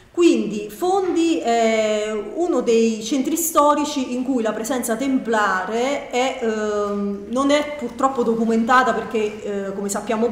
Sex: female